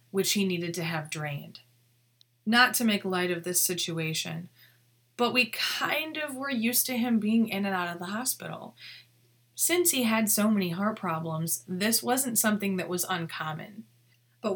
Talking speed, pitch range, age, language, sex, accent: 175 wpm, 160-220 Hz, 20-39, English, female, American